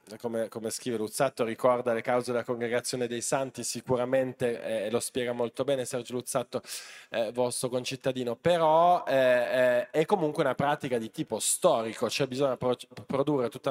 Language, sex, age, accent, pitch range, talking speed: Italian, male, 20-39, native, 120-140 Hz, 165 wpm